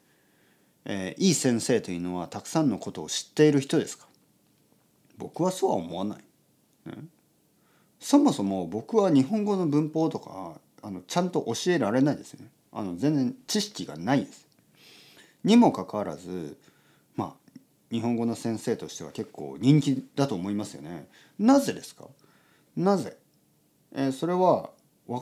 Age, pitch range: 40-59, 110-160 Hz